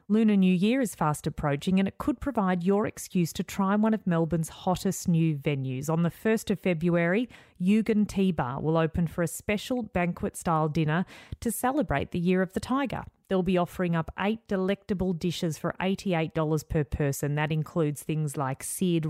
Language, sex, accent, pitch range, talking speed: English, female, Australian, 160-200 Hz, 180 wpm